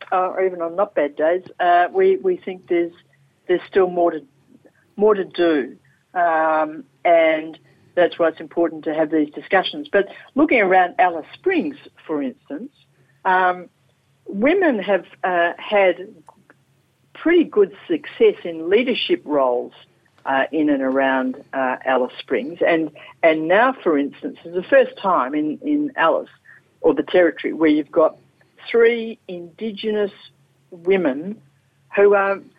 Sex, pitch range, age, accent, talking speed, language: female, 160-220 Hz, 60-79, Australian, 140 wpm, English